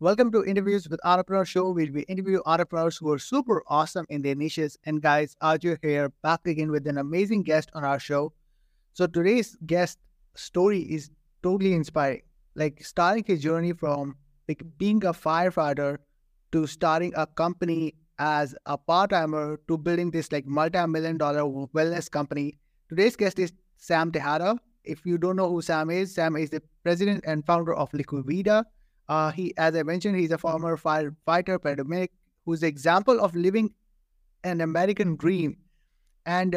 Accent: Indian